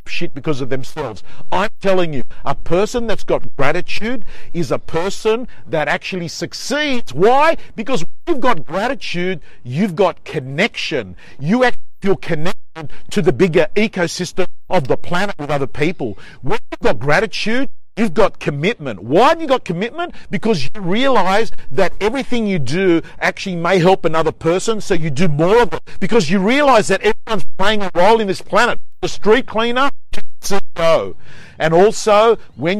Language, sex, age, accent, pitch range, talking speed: English, male, 50-69, Australian, 150-205 Hz, 165 wpm